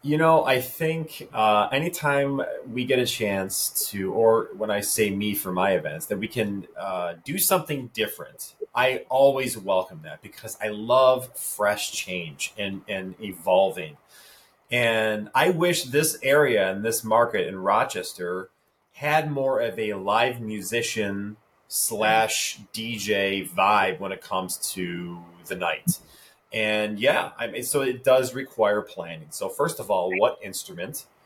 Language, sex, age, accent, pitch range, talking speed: English, male, 30-49, American, 100-130 Hz, 150 wpm